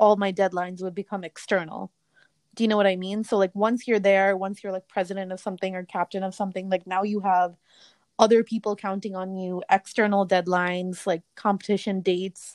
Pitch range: 185-220 Hz